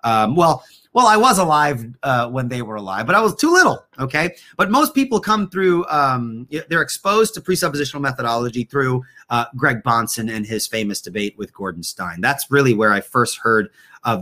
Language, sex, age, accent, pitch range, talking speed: English, male, 30-49, American, 125-175 Hz, 195 wpm